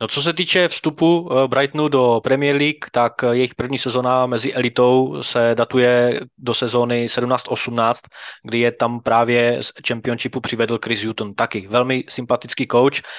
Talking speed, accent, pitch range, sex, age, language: 150 wpm, native, 115-130 Hz, male, 20-39, Czech